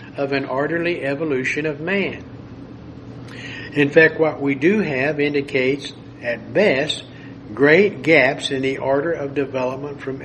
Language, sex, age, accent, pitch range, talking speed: English, male, 60-79, American, 135-155 Hz, 135 wpm